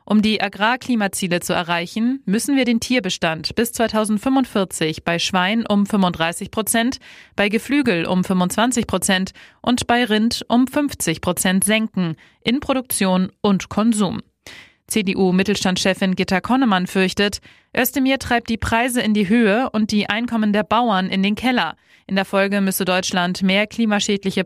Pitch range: 185-230 Hz